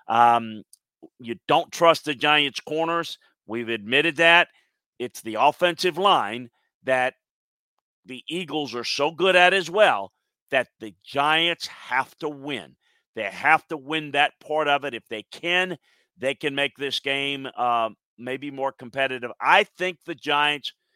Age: 50-69